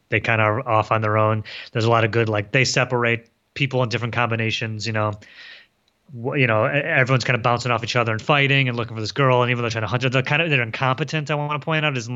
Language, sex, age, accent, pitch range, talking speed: English, male, 30-49, American, 110-130 Hz, 280 wpm